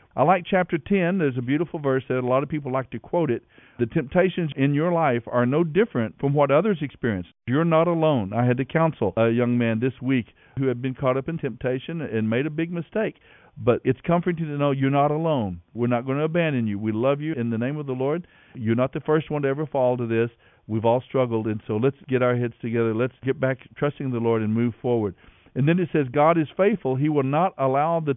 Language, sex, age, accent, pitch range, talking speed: English, male, 50-69, American, 115-155 Hz, 250 wpm